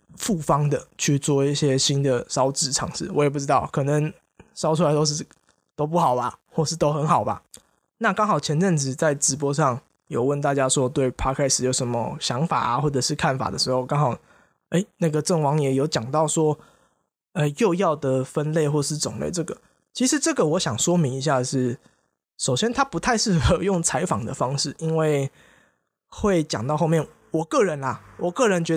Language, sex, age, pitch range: Chinese, male, 20-39, 140-170 Hz